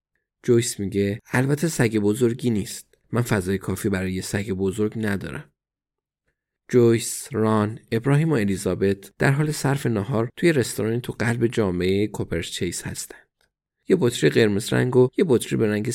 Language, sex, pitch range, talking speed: Persian, male, 100-125 Hz, 145 wpm